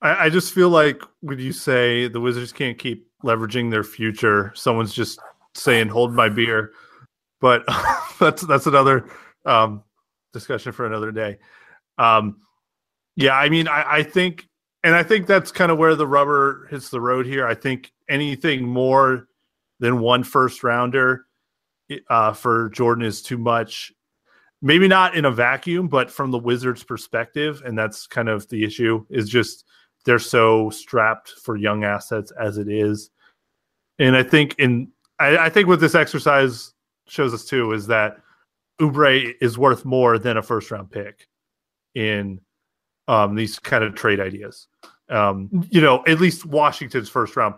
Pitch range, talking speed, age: 110-145 Hz, 165 wpm, 30-49